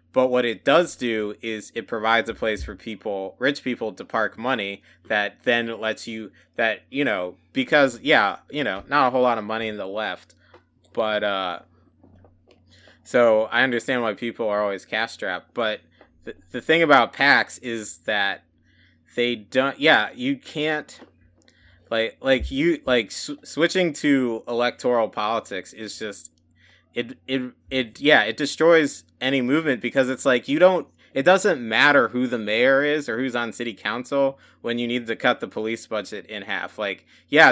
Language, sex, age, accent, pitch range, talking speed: English, male, 20-39, American, 100-130 Hz, 175 wpm